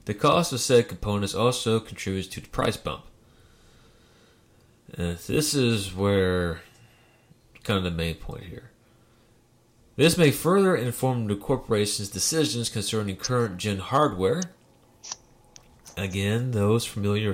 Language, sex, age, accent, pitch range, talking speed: English, male, 30-49, American, 100-125 Hz, 115 wpm